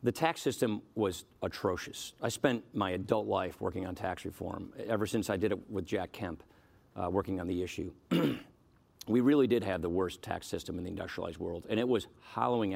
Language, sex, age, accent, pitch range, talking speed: English, male, 50-69, American, 95-115 Hz, 200 wpm